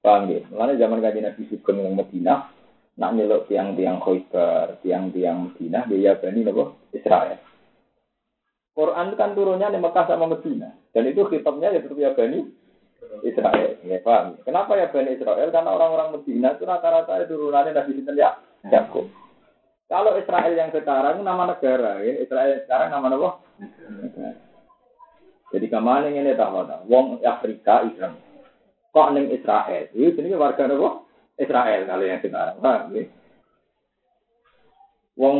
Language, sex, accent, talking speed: Indonesian, male, native, 125 wpm